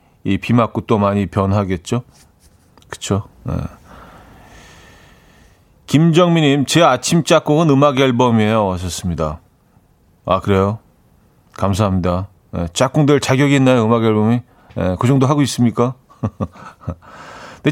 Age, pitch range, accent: 40-59, 105-135 Hz, native